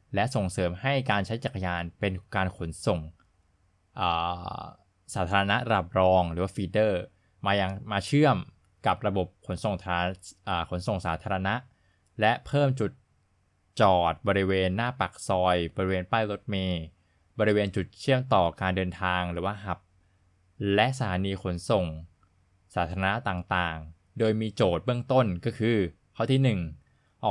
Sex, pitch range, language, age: male, 90-110 Hz, Thai, 20-39